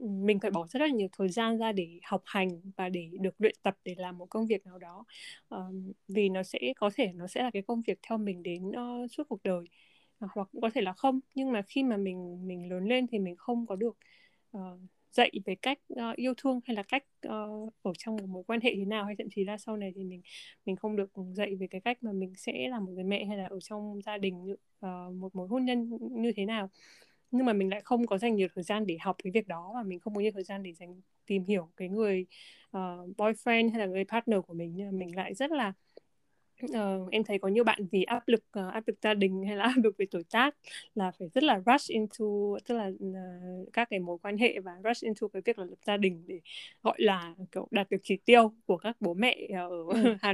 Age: 10-29